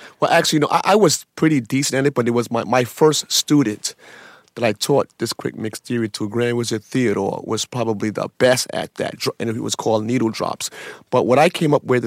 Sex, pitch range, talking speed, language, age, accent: male, 115-130 Hz, 235 wpm, English, 30-49, American